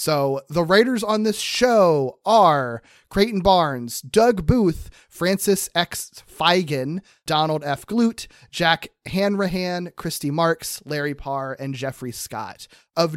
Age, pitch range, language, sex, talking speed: 30-49, 125-165 Hz, English, male, 125 wpm